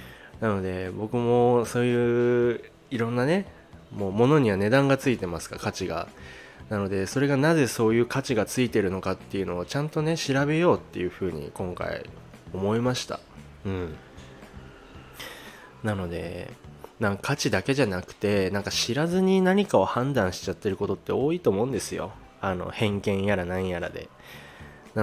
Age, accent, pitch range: 20-39, native, 95-125 Hz